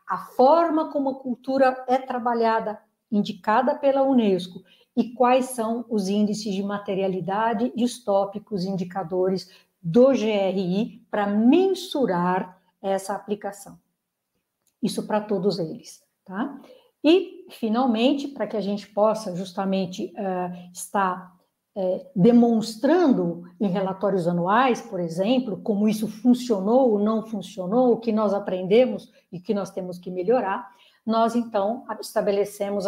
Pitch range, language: 190-235 Hz, Portuguese